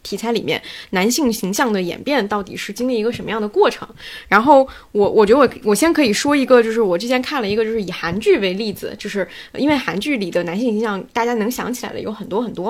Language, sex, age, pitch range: Chinese, female, 20-39, 205-260 Hz